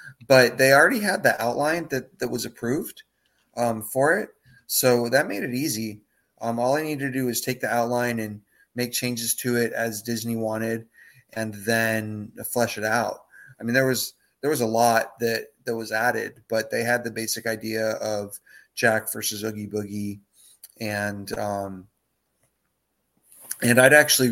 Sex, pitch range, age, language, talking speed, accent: male, 105-120 Hz, 30-49, English, 170 wpm, American